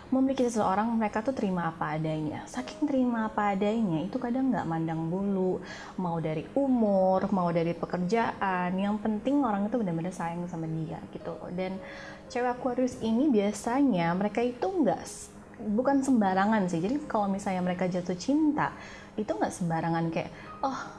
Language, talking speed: Indonesian, 150 wpm